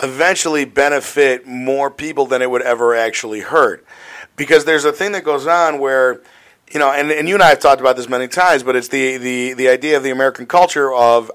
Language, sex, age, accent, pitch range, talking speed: English, male, 40-59, American, 120-150 Hz, 220 wpm